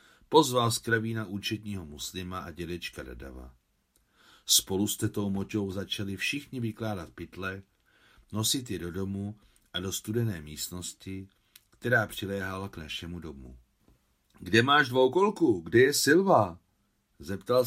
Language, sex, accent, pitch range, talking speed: Czech, male, native, 80-110 Hz, 120 wpm